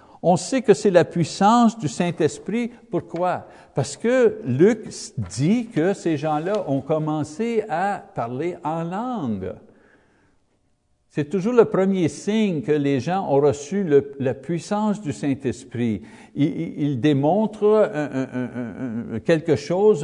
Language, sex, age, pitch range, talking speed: French, male, 60-79, 145-210 Hz, 140 wpm